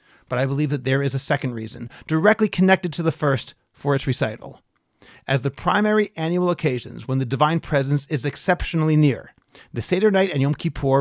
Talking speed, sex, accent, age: 190 wpm, male, American, 40-59